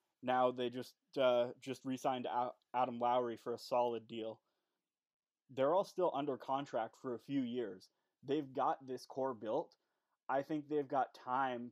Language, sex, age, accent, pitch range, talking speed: English, male, 20-39, American, 120-140 Hz, 155 wpm